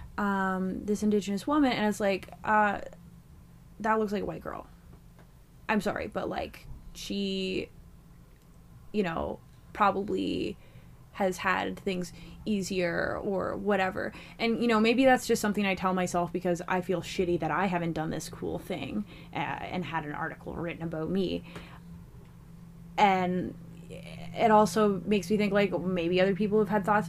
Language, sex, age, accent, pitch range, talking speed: English, female, 10-29, American, 165-200 Hz, 155 wpm